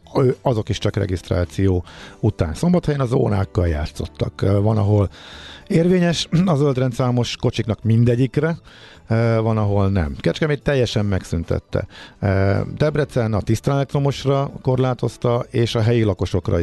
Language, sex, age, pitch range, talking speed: Hungarian, male, 50-69, 90-115 Hz, 110 wpm